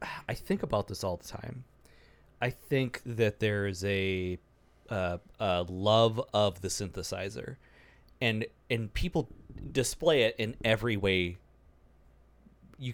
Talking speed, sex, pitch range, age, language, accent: 130 wpm, male, 90-120 Hz, 30-49, English, American